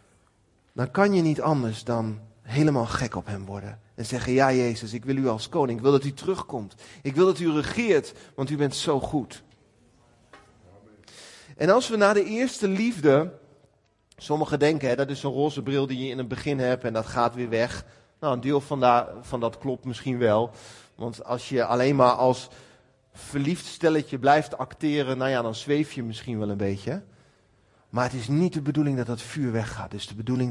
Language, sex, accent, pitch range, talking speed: Dutch, male, Dutch, 120-175 Hz, 205 wpm